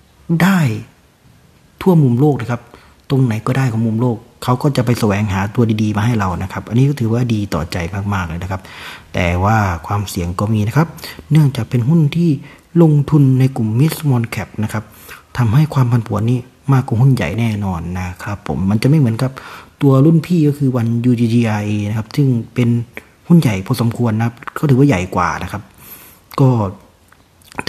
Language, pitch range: Thai, 105-135 Hz